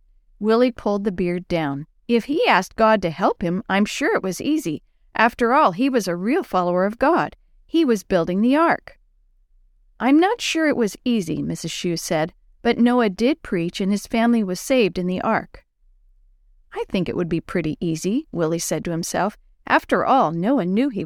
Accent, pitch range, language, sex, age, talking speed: American, 175-240 Hz, English, female, 50-69, 195 wpm